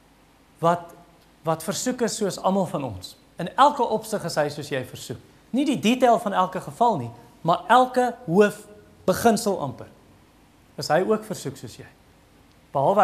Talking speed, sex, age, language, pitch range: 150 wpm, male, 40-59, English, 140-210 Hz